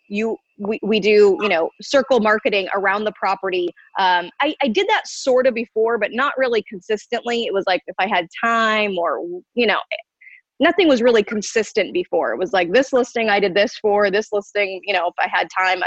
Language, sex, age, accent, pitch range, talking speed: English, female, 20-39, American, 200-255 Hz, 210 wpm